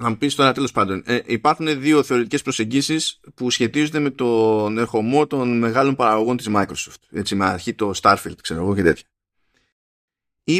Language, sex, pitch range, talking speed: Greek, male, 105-130 Hz, 170 wpm